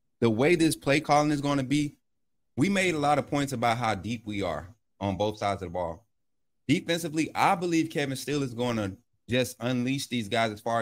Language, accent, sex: English, American, male